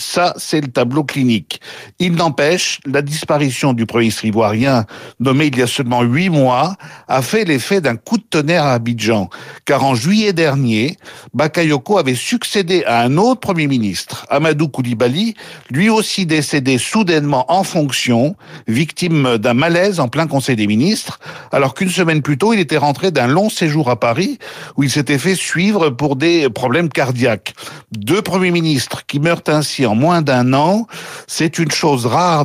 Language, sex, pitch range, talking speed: French, male, 125-170 Hz, 175 wpm